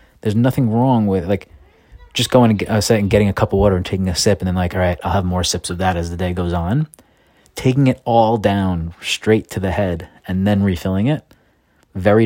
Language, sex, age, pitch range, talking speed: English, male, 30-49, 85-100 Hz, 235 wpm